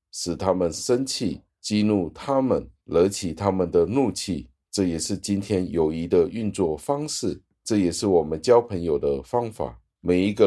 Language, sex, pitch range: Chinese, male, 80-100 Hz